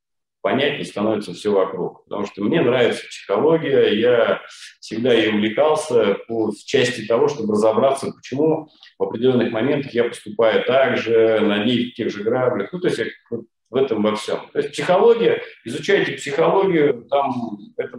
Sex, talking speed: male, 150 wpm